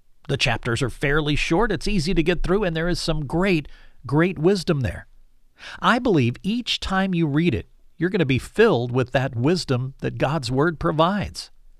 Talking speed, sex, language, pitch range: 190 wpm, male, English, 120-165 Hz